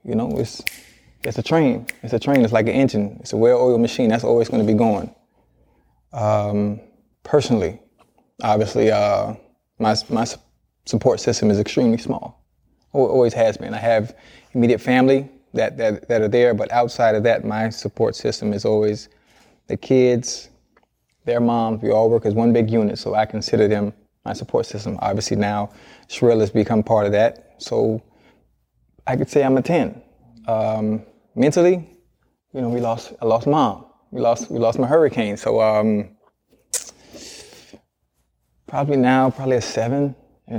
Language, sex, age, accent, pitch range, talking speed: English, male, 20-39, American, 110-130 Hz, 165 wpm